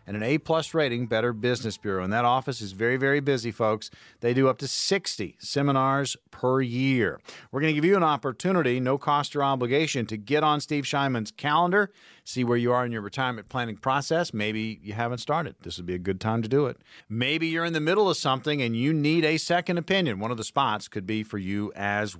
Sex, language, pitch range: male, English, 110-155 Hz